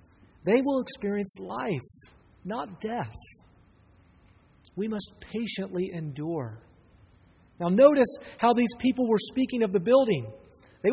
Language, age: English, 40-59